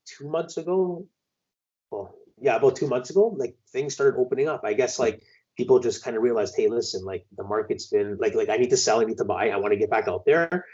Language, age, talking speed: English, 30-49, 250 wpm